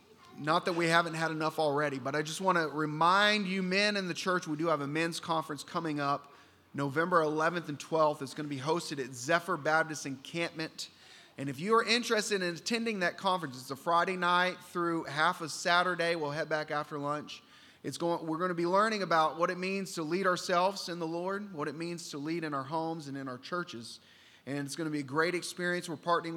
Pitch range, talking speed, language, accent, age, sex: 145-180 Hz, 230 wpm, English, American, 30-49, male